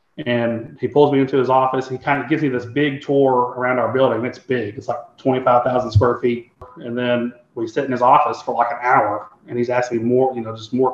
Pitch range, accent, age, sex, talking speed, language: 120-135 Hz, American, 30-49, male, 245 wpm, English